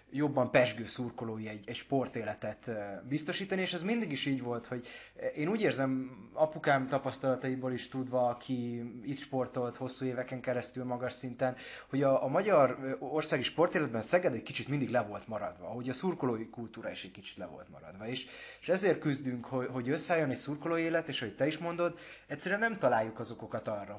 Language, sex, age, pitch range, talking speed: Hungarian, male, 30-49, 115-140 Hz, 180 wpm